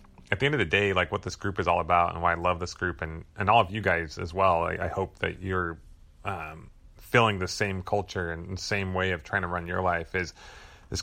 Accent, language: American, English